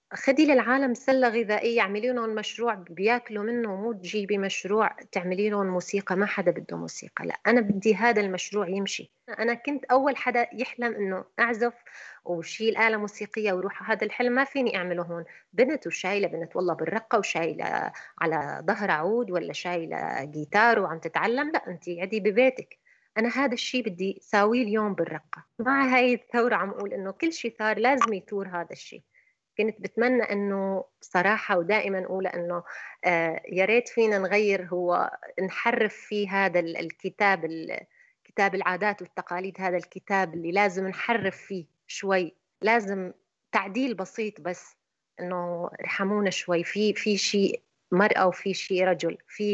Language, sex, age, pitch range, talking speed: Arabic, female, 30-49, 180-235 Hz, 145 wpm